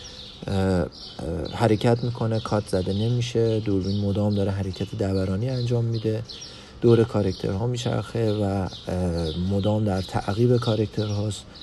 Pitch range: 95-115 Hz